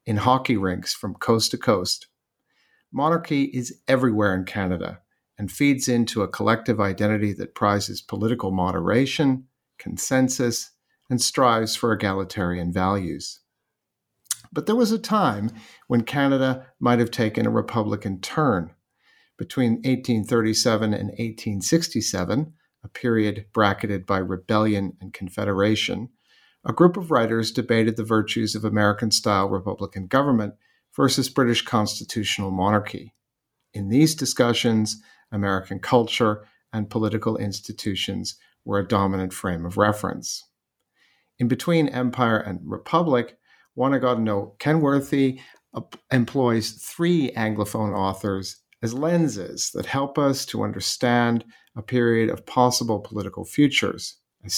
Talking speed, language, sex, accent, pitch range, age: 120 wpm, English, male, American, 100-130 Hz, 50-69